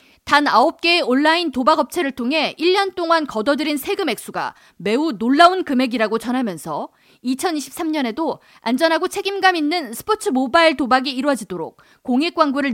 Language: Korean